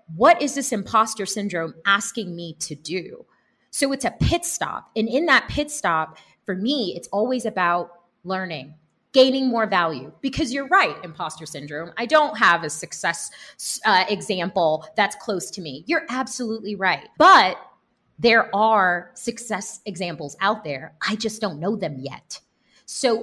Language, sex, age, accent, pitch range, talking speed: English, female, 30-49, American, 185-255 Hz, 160 wpm